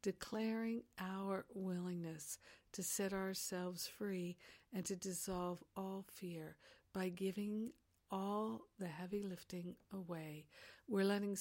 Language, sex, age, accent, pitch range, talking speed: English, female, 60-79, American, 180-210 Hz, 110 wpm